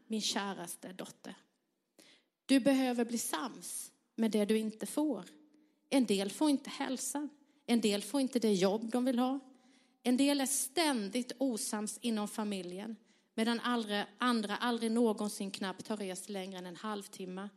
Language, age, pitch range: Swedish, 30-49, 200-265 Hz